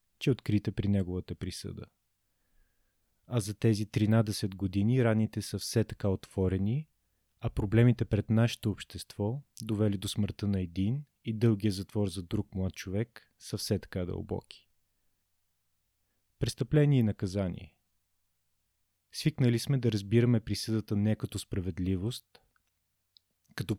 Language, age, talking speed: Bulgarian, 30-49, 125 wpm